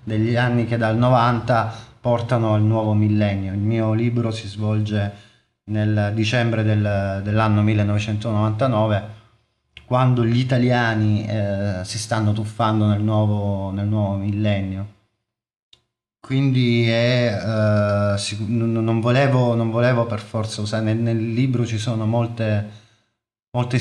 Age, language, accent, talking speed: 30-49, Italian, native, 125 wpm